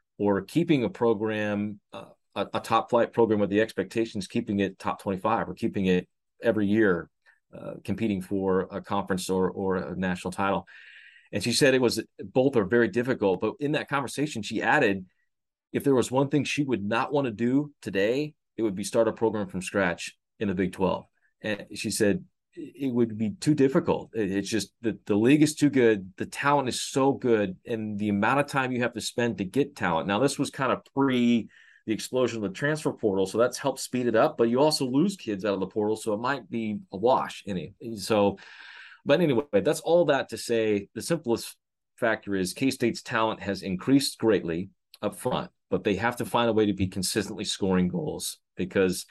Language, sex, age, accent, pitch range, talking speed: English, male, 30-49, American, 100-130 Hz, 210 wpm